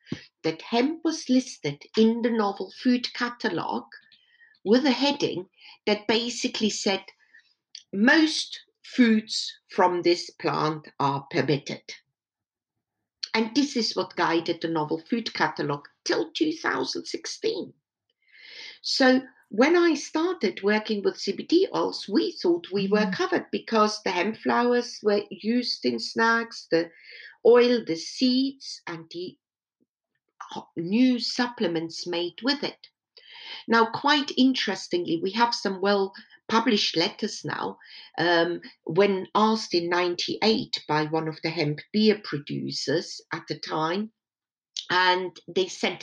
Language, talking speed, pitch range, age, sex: English, 120 wpm, 170-260 Hz, 50-69, female